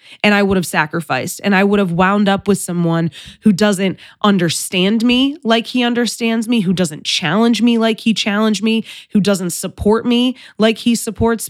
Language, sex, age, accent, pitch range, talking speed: English, female, 20-39, American, 200-250 Hz, 190 wpm